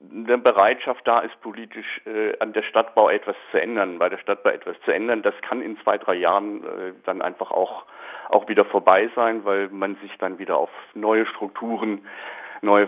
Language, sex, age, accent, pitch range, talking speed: German, male, 50-69, German, 105-165 Hz, 190 wpm